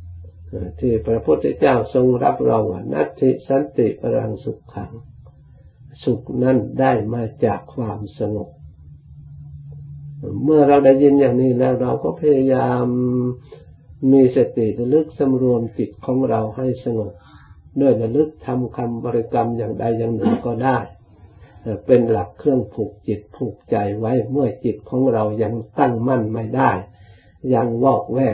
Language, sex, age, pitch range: Thai, male, 60-79, 110-135 Hz